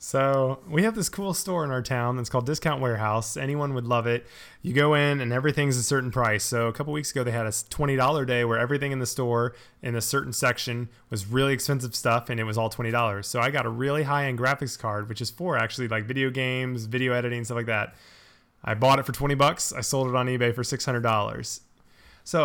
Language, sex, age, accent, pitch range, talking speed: English, male, 20-39, American, 115-135 Hz, 235 wpm